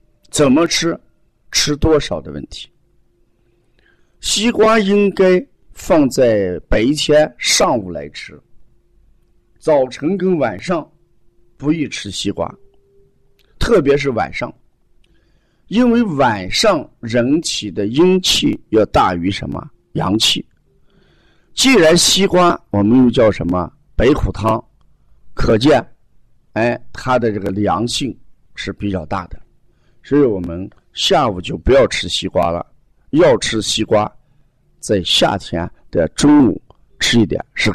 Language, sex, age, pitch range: Chinese, male, 50-69, 115-180 Hz